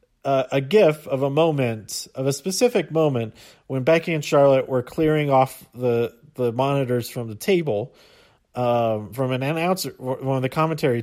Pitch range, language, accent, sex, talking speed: 125-160 Hz, English, American, male, 170 wpm